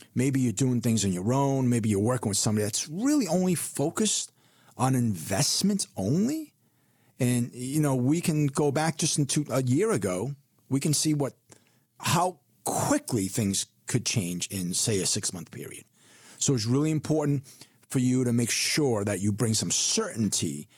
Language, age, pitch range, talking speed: English, 40-59, 110-140 Hz, 170 wpm